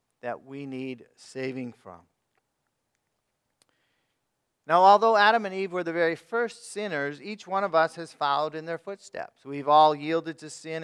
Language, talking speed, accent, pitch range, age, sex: English, 160 wpm, American, 135-160 Hz, 40-59, male